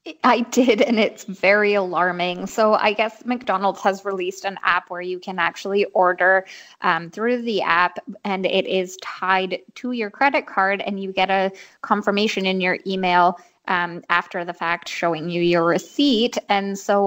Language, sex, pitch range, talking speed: English, female, 185-220 Hz, 170 wpm